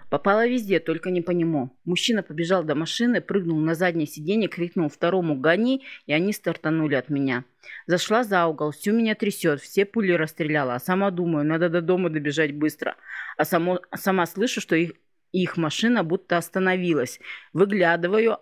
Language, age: Russian, 30-49